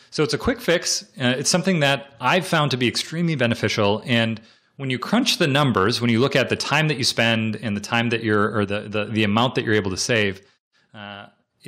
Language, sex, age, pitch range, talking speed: English, male, 30-49, 100-135 Hz, 235 wpm